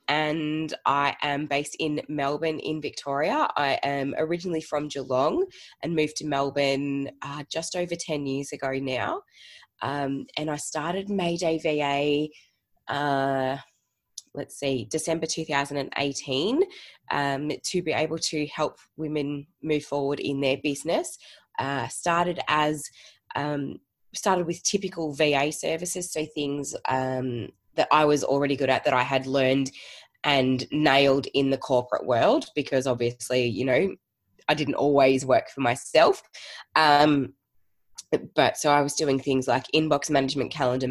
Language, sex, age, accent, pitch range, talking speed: English, female, 20-39, Australian, 135-155 Hz, 140 wpm